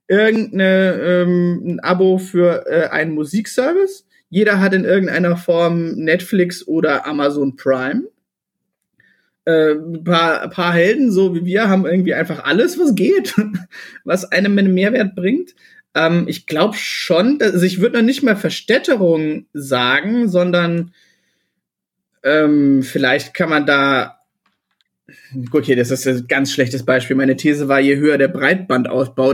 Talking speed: 140 wpm